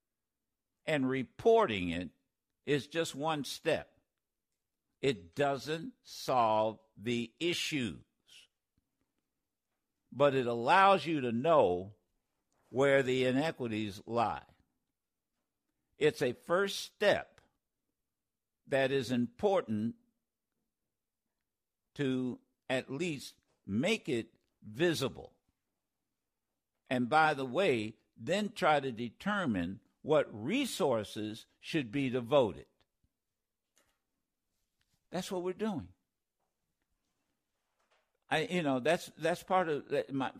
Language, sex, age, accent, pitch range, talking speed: English, male, 60-79, American, 120-175 Hz, 90 wpm